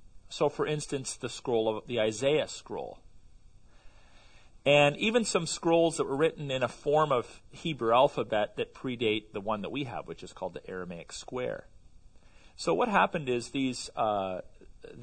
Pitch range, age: 100-150 Hz, 40-59